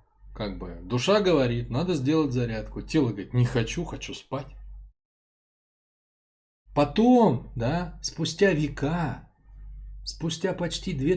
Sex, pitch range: male, 105-145 Hz